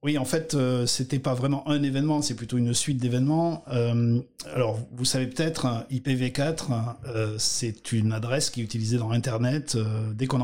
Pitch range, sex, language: 120-145 Hz, male, French